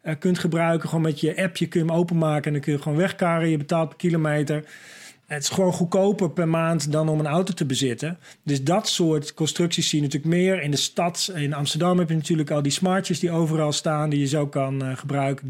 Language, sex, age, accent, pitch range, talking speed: Dutch, male, 40-59, Dutch, 140-175 Hz, 230 wpm